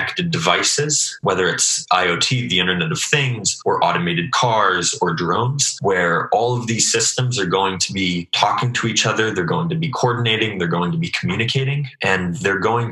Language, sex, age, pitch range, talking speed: English, male, 20-39, 90-150 Hz, 180 wpm